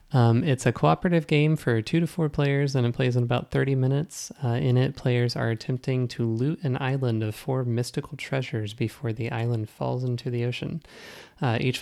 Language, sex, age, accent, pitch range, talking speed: English, male, 30-49, American, 115-140 Hz, 205 wpm